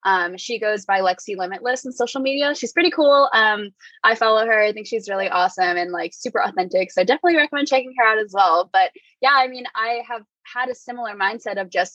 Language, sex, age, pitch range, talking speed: English, female, 10-29, 195-255 Hz, 230 wpm